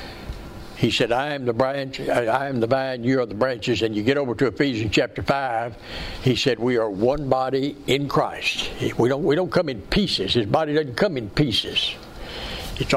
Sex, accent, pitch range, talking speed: male, American, 120-155 Hz, 205 wpm